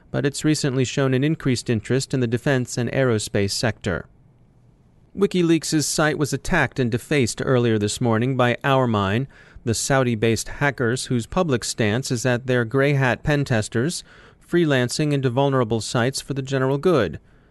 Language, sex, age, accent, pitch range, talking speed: English, male, 30-49, American, 115-140 Hz, 150 wpm